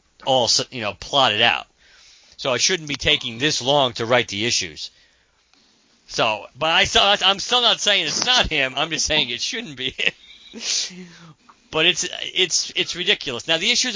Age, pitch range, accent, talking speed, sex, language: 50-69, 115-155 Hz, American, 180 wpm, male, English